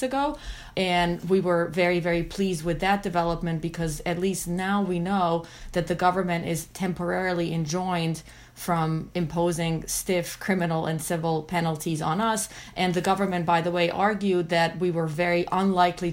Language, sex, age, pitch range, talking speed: English, female, 30-49, 165-185 Hz, 160 wpm